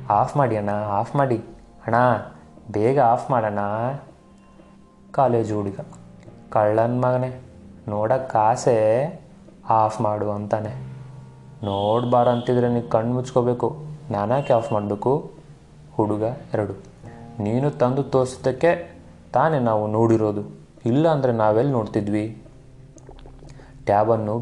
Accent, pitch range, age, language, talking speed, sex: native, 105-125 Hz, 30-49, Kannada, 90 wpm, male